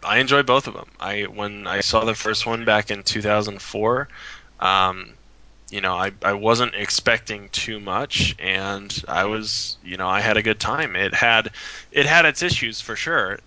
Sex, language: male, English